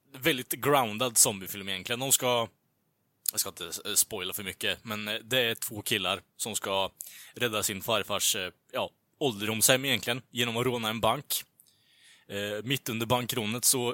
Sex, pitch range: male, 105-130 Hz